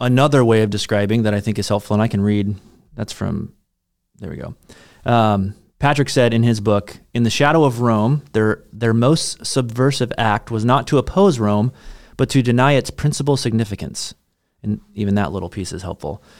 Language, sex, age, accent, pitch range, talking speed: English, male, 30-49, American, 105-130 Hz, 190 wpm